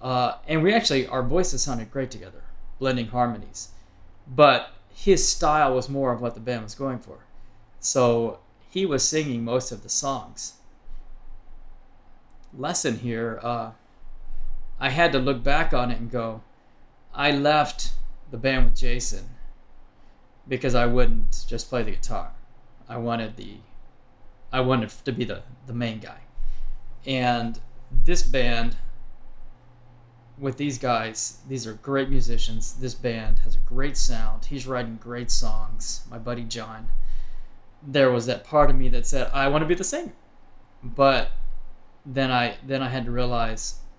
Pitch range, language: 115-135 Hz, English